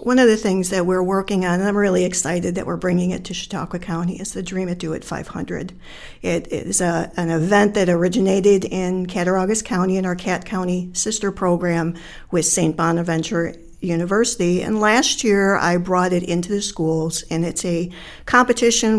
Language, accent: English, American